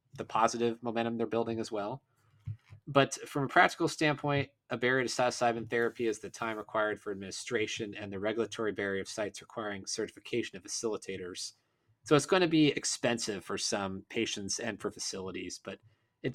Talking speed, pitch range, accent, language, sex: 175 wpm, 110-135 Hz, American, English, male